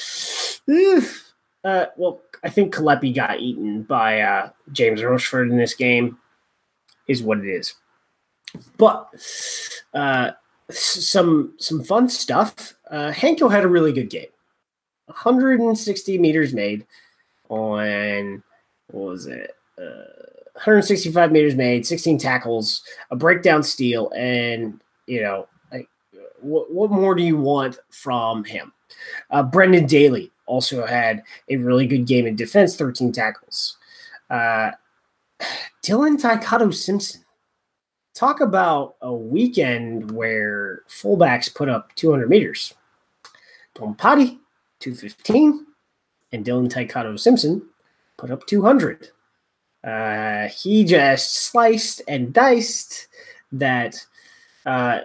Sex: male